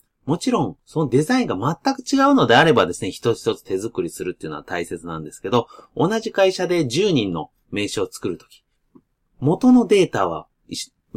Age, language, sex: 30-49, Japanese, male